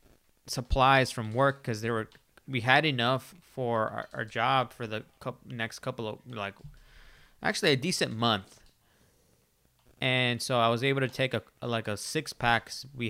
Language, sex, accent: English, male, American